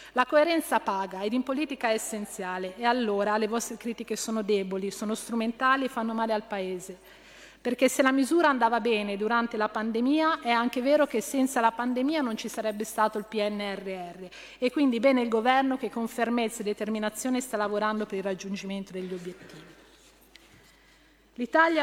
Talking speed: 170 wpm